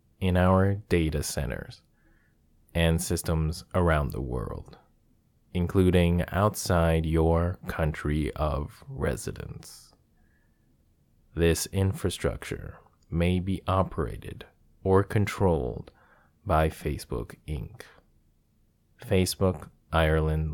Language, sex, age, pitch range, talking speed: English, male, 20-39, 80-95 Hz, 80 wpm